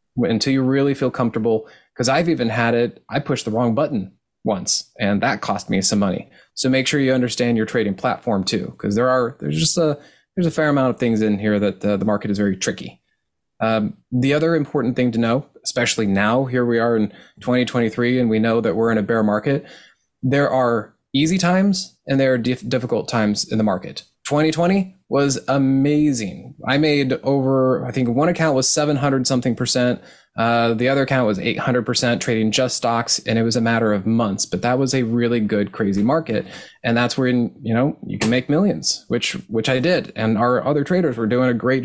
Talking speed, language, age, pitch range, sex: 210 wpm, English, 20-39, 115-135 Hz, male